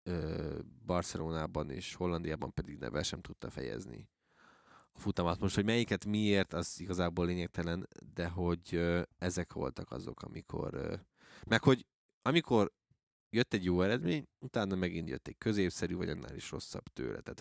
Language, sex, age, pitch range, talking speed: Hungarian, male, 20-39, 85-100 Hz, 140 wpm